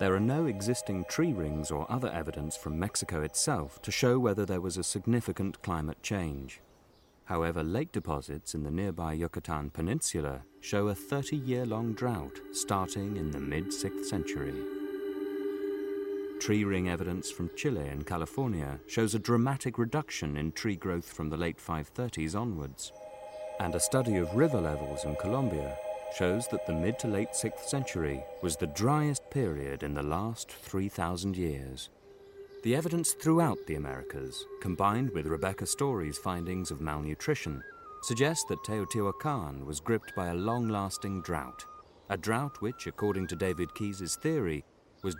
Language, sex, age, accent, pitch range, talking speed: English, male, 30-49, British, 85-115 Hz, 150 wpm